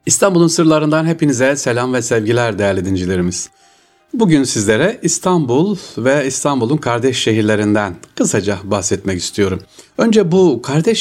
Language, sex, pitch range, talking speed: Turkish, male, 105-160 Hz, 115 wpm